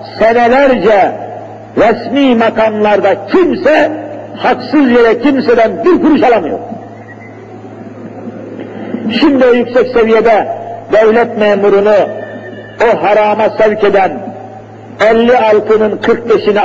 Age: 50-69